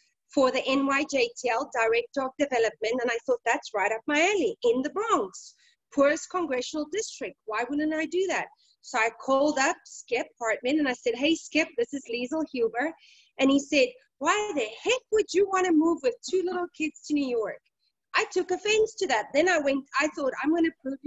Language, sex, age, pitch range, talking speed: English, female, 30-49, 245-335 Hz, 200 wpm